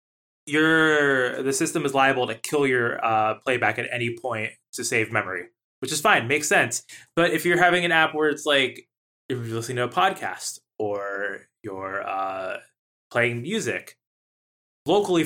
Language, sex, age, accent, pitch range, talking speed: English, male, 20-39, American, 125-155 Hz, 165 wpm